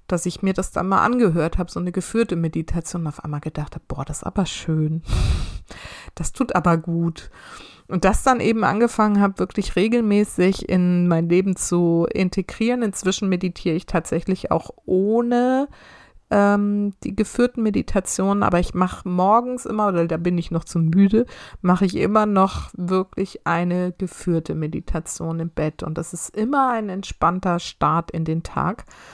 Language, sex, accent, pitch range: German, female, German, 170-205 Hz